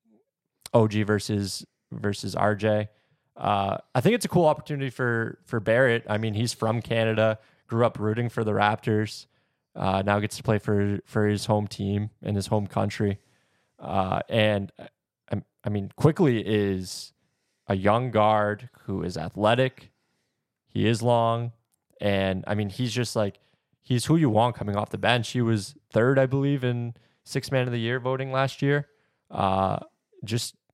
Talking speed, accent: 165 wpm, American